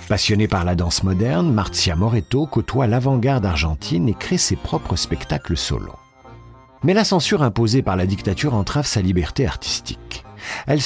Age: 50-69